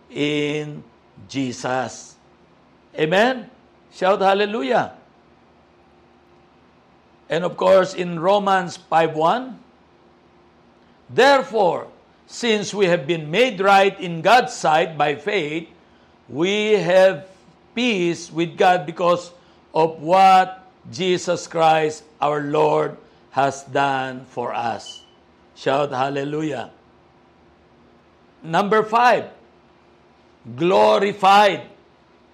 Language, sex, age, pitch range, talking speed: Filipino, male, 60-79, 150-200 Hz, 80 wpm